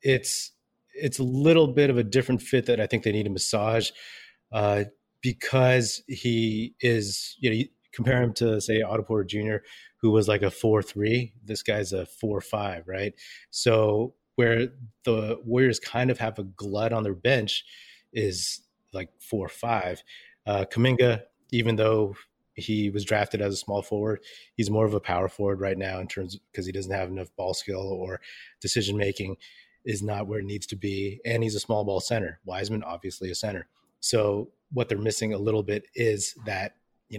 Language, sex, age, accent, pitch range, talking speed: English, male, 30-49, American, 100-115 Hz, 185 wpm